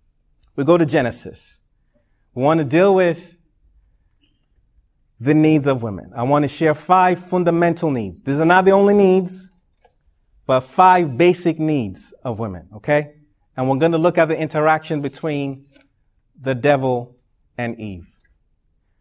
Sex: male